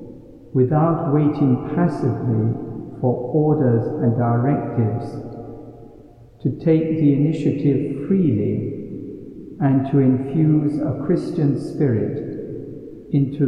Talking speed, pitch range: 85 wpm, 120-150 Hz